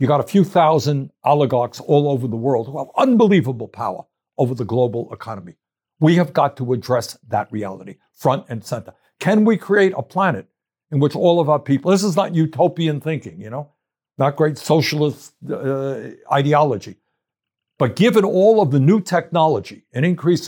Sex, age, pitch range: male, 60-79, 140-185 Hz